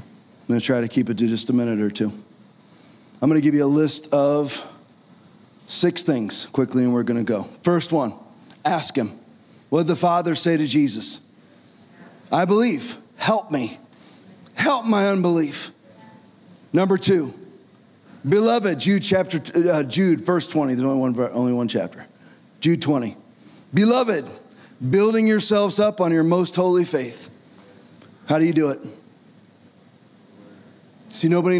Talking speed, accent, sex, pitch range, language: 150 wpm, American, male, 150-205 Hz, English